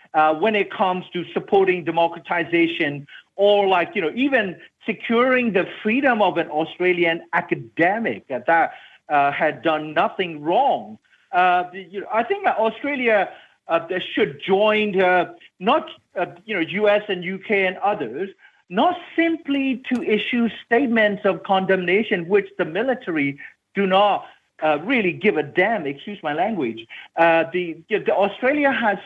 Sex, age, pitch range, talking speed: male, 50-69, 170-235 Hz, 140 wpm